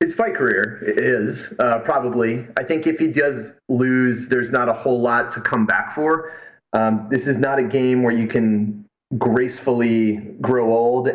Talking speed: 180 wpm